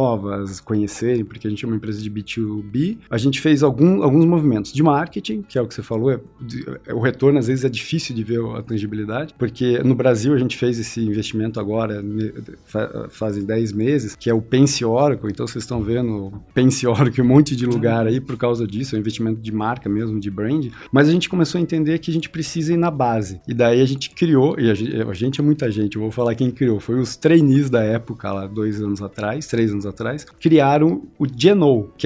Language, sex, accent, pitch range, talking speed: Portuguese, male, Brazilian, 110-145 Hz, 235 wpm